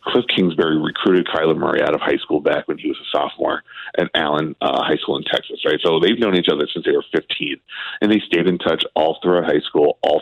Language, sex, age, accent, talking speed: English, male, 40-59, American, 245 wpm